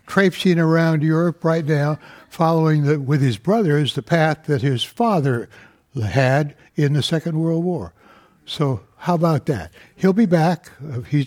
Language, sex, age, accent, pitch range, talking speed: English, male, 60-79, American, 130-165 Hz, 155 wpm